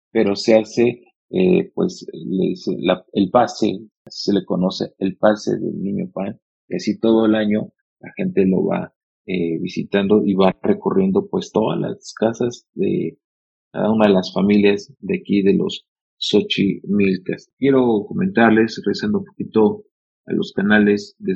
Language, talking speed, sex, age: Spanish, 155 wpm, male, 40-59